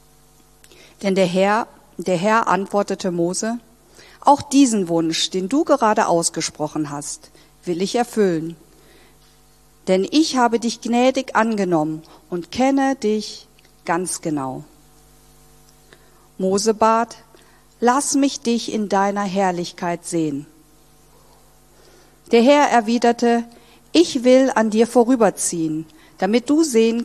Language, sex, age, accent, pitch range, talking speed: German, female, 50-69, German, 165-235 Hz, 105 wpm